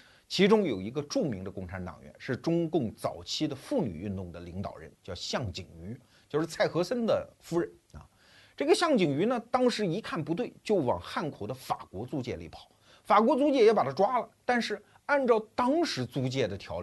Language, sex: Chinese, male